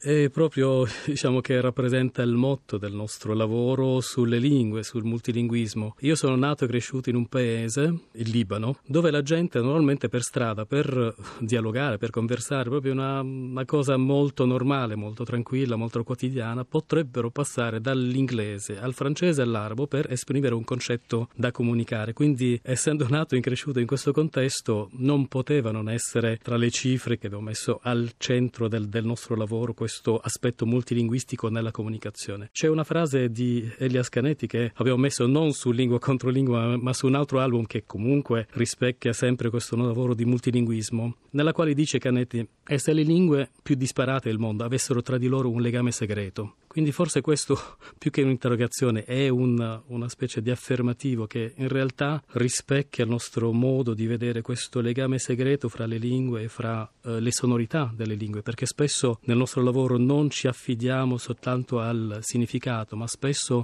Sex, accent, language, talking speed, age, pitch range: male, native, Italian, 170 wpm, 40-59, 115-135 Hz